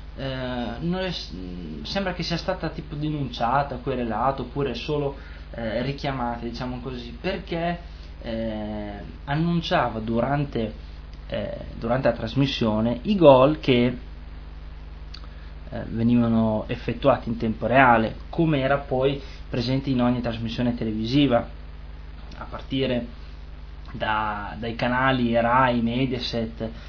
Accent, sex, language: native, male, Italian